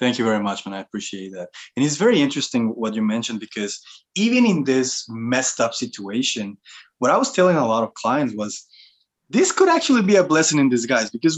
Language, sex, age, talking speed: English, male, 20-39, 210 wpm